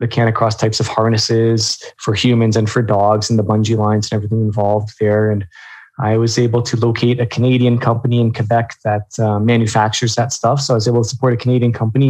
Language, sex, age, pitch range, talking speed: English, male, 20-39, 110-130 Hz, 220 wpm